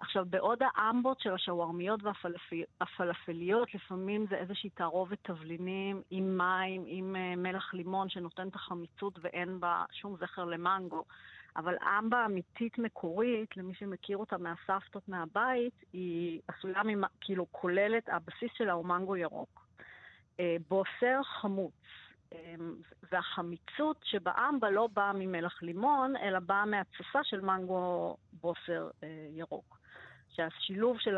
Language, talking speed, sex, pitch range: Hebrew, 115 wpm, female, 170-210 Hz